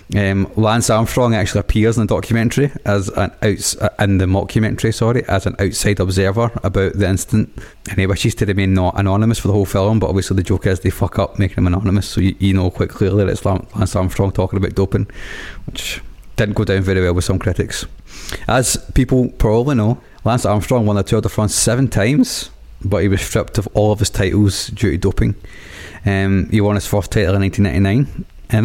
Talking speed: 210 wpm